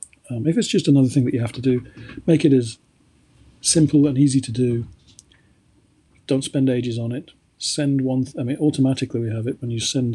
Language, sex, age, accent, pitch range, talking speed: English, male, 40-59, British, 115-145 Hz, 215 wpm